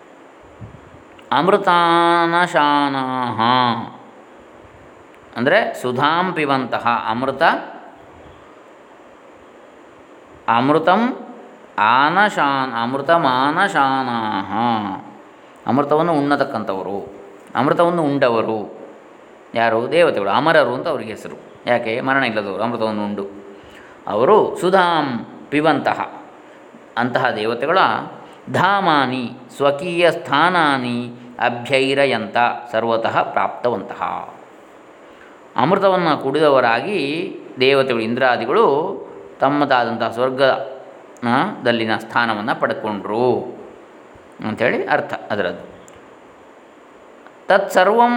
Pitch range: 120-170 Hz